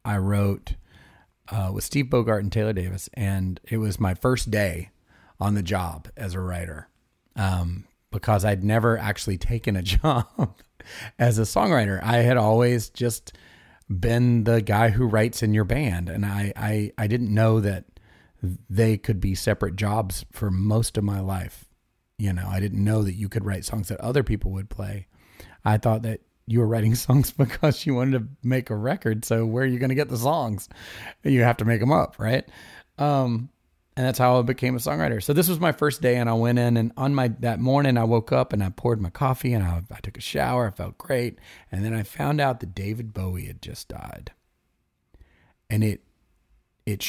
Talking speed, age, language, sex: 205 wpm, 30-49, English, male